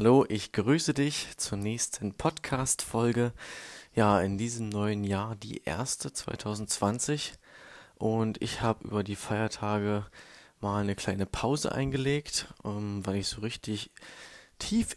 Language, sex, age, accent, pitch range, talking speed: German, male, 20-39, German, 100-115 Hz, 125 wpm